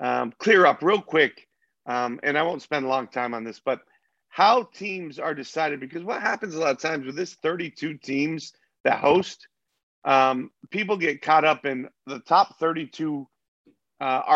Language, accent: English, American